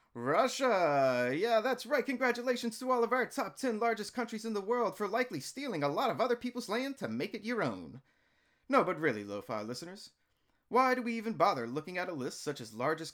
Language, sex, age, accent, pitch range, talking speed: English, male, 30-49, American, 135-215 Hz, 215 wpm